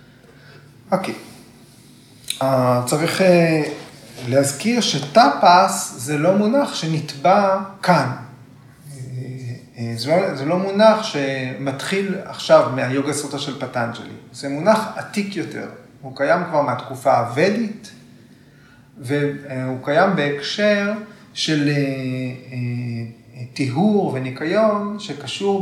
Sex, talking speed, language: male, 100 wpm, Hebrew